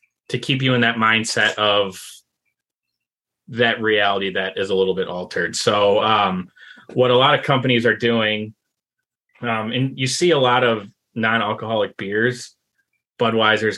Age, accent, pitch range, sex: 20-39, American, 105-125 Hz, male